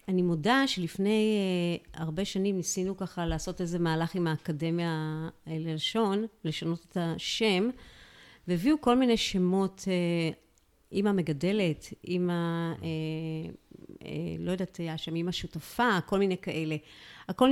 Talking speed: 125 wpm